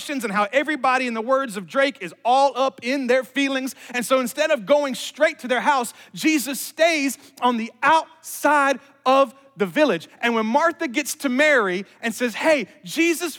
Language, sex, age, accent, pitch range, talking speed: English, male, 30-49, American, 175-285 Hz, 185 wpm